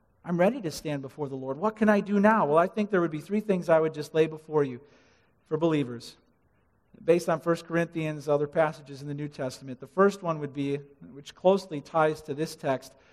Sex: male